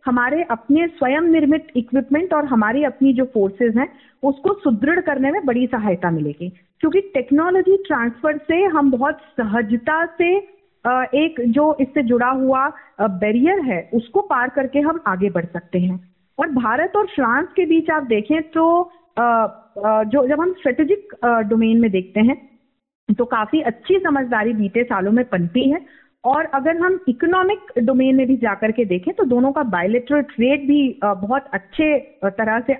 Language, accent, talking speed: Hindi, native, 155 wpm